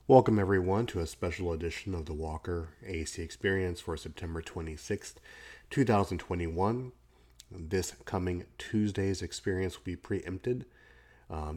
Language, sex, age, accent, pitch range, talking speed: English, male, 30-49, American, 80-95 Hz, 120 wpm